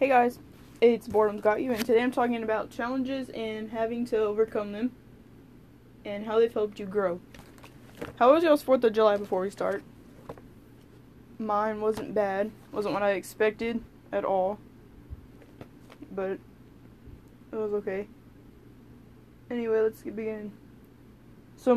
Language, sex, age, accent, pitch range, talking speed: English, female, 10-29, American, 200-220 Hz, 140 wpm